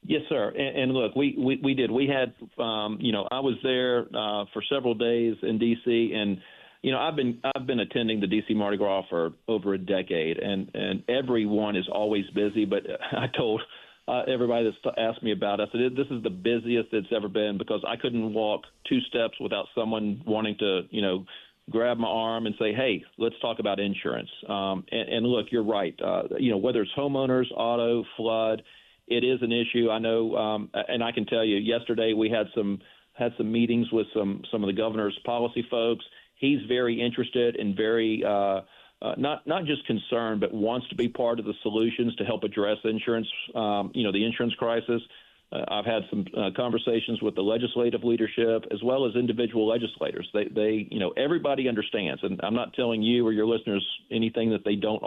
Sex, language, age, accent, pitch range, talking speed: male, English, 40-59, American, 105-120 Hz, 205 wpm